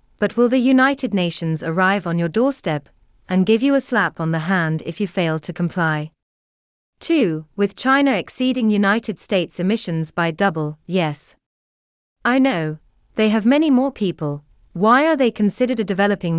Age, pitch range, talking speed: 30-49, 160-225 Hz, 165 wpm